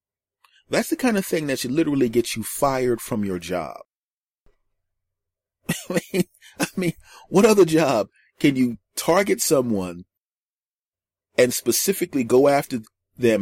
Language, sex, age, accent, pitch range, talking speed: English, male, 30-49, American, 95-115 Hz, 125 wpm